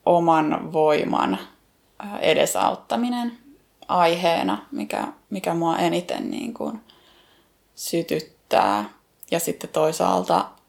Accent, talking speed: native, 75 wpm